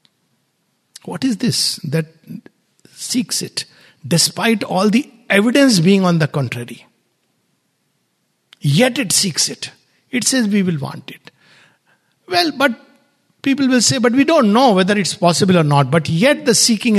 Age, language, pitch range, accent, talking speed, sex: 60-79, English, 160-225 Hz, Indian, 150 wpm, male